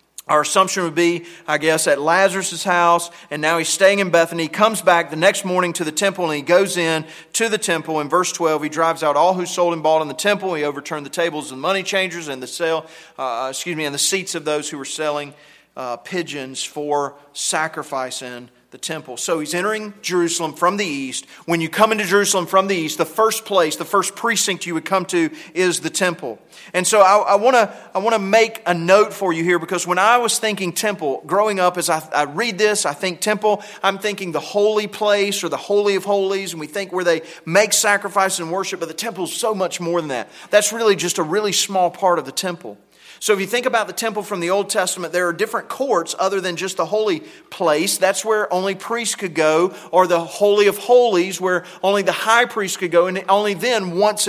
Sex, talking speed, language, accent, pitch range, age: male, 235 wpm, English, American, 165-205 Hz, 40-59